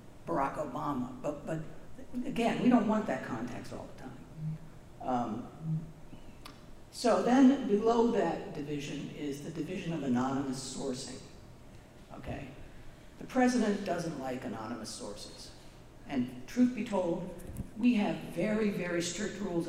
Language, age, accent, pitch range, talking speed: English, 60-79, American, 150-230 Hz, 130 wpm